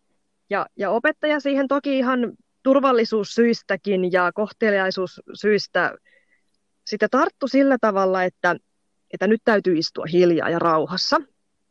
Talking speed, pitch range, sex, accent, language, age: 100 wpm, 175-240 Hz, female, native, Finnish, 20-39